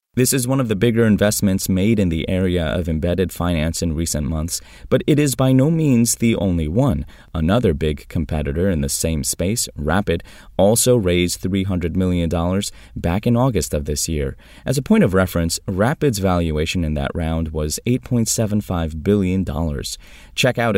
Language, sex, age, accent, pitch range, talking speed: English, male, 20-39, American, 80-115 Hz, 170 wpm